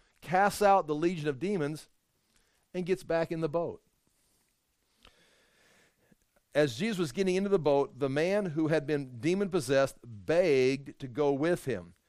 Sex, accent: male, American